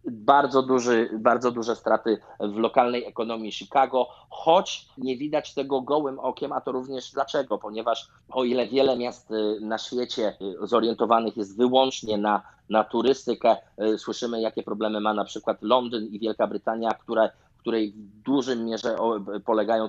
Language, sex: Polish, male